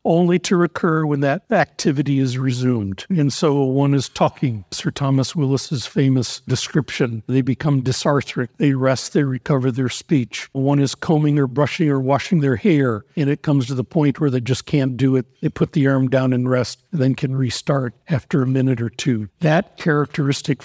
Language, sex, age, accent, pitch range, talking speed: English, male, 60-79, American, 130-155 Hz, 190 wpm